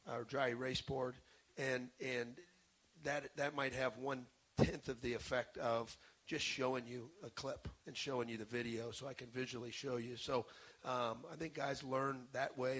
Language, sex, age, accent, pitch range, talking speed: English, male, 40-59, American, 120-135 Hz, 185 wpm